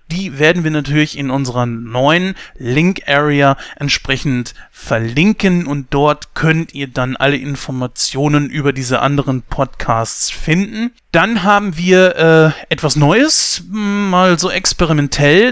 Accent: German